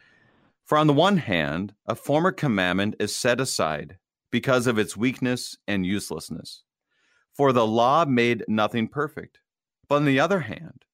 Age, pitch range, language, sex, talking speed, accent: 40-59, 110-140 Hz, English, male, 155 wpm, American